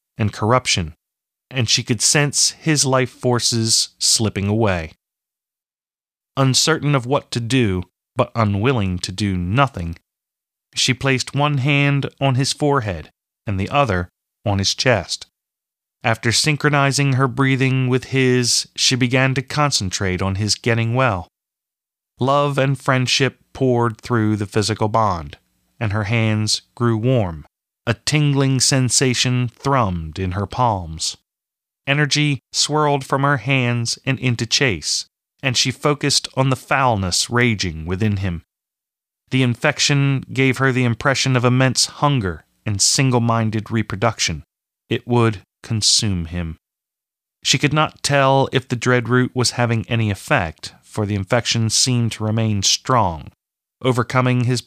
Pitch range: 105-135 Hz